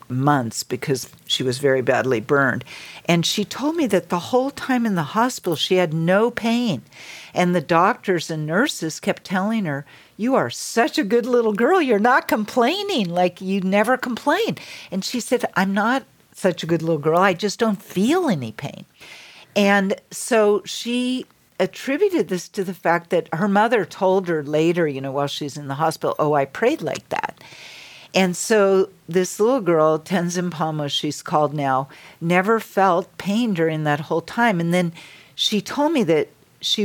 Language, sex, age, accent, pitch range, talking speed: English, female, 50-69, American, 140-200 Hz, 180 wpm